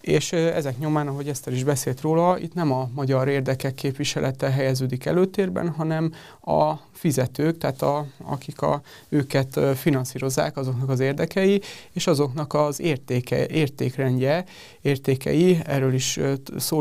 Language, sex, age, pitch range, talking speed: Hungarian, male, 30-49, 135-150 Hz, 130 wpm